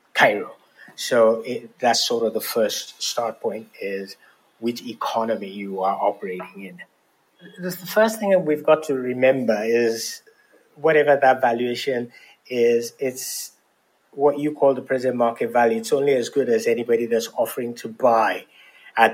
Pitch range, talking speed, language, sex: 115-155 Hz, 150 wpm, English, male